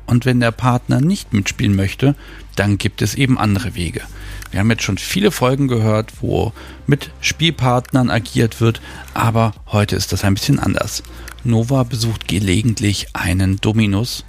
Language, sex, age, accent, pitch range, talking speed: German, male, 40-59, German, 100-120 Hz, 155 wpm